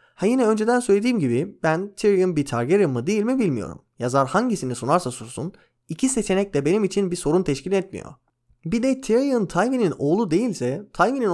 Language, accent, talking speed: Turkish, native, 175 wpm